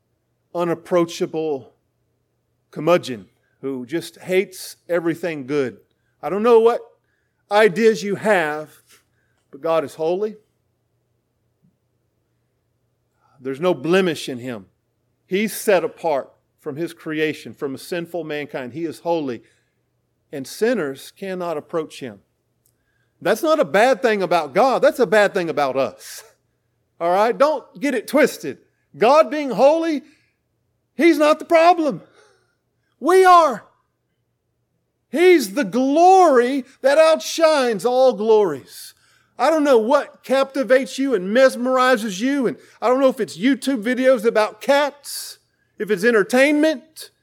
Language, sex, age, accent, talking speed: English, male, 40-59, American, 125 wpm